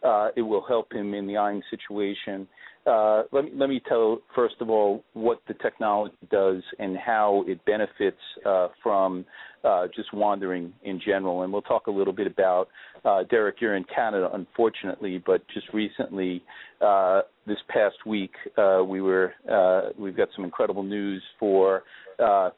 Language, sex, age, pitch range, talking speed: English, male, 40-59, 95-105 Hz, 170 wpm